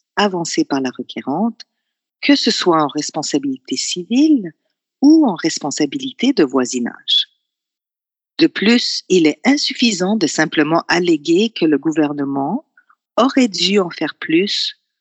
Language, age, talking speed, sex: English, 50-69, 125 wpm, female